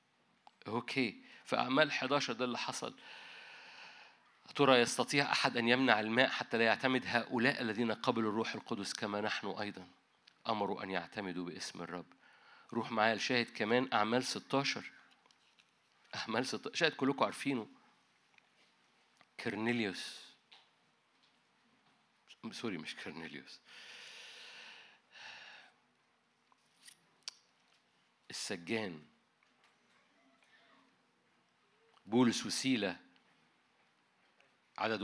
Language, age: Arabic, 50-69